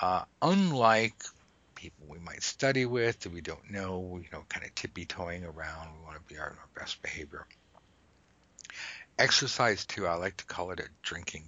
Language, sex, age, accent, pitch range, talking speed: English, male, 60-79, American, 85-115 Hz, 180 wpm